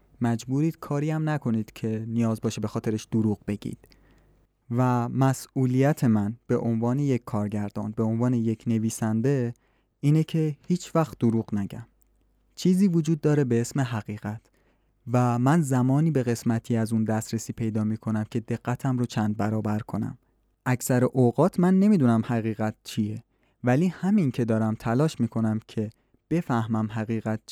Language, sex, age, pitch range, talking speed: Persian, male, 20-39, 110-140 Hz, 145 wpm